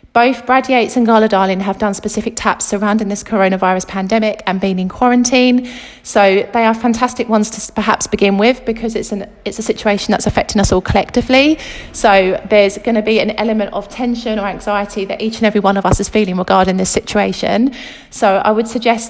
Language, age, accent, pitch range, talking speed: English, 30-49, British, 200-240 Hz, 205 wpm